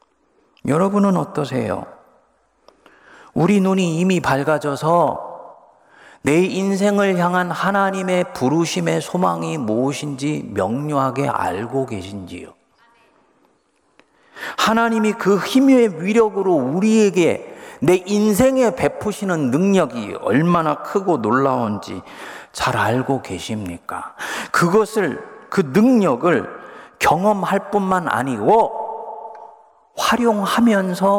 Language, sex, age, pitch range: Korean, male, 40-59, 135-215 Hz